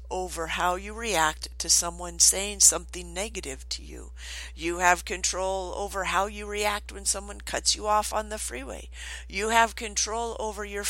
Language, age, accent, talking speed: English, 50-69, American, 170 wpm